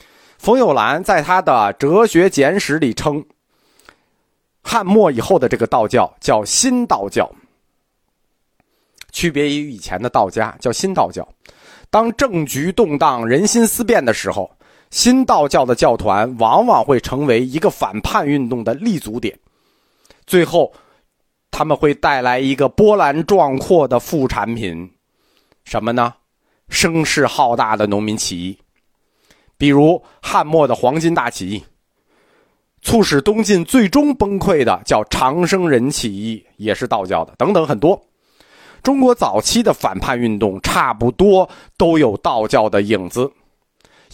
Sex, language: male, Chinese